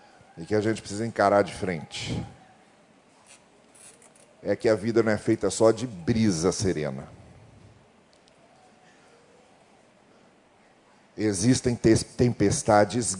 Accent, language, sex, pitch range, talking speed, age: Brazilian, Portuguese, male, 110-160 Hz, 95 wpm, 40-59